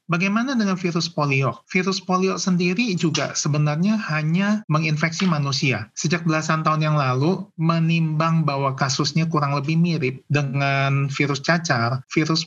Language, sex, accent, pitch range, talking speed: Indonesian, male, native, 135-160 Hz, 130 wpm